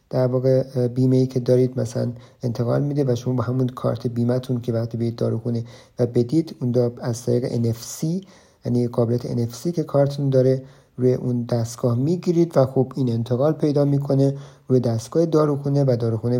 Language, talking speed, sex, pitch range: Persian, 180 wpm, male, 120-140 Hz